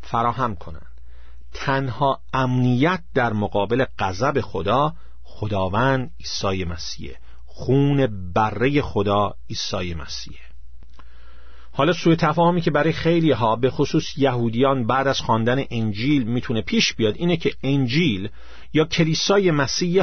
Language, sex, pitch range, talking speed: Persian, male, 100-160 Hz, 115 wpm